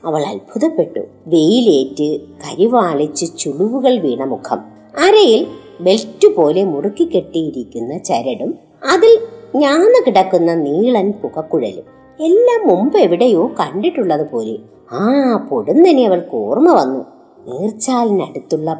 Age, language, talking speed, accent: 50-69, Malayalam, 95 wpm, native